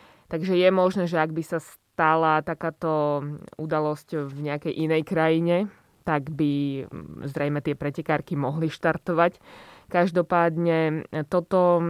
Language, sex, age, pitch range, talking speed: Slovak, female, 20-39, 155-175 Hz, 115 wpm